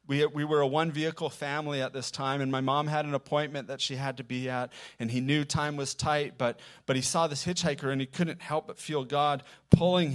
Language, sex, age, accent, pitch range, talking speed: English, male, 30-49, American, 120-150 Hz, 240 wpm